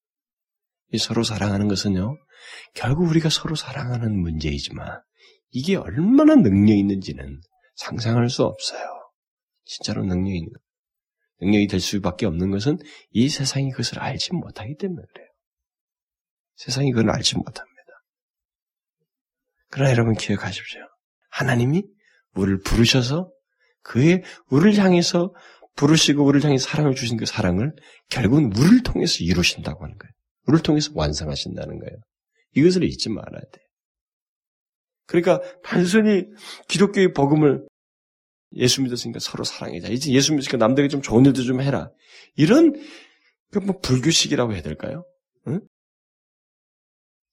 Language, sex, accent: Korean, male, native